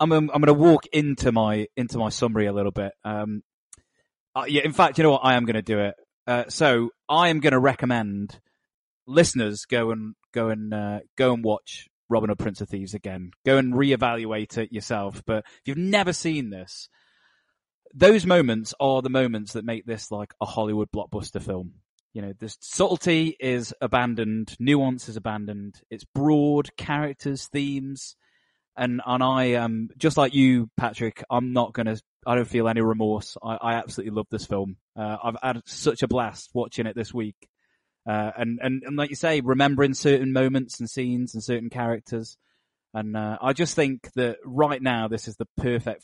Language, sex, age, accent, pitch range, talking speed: English, male, 20-39, British, 110-135 Hz, 190 wpm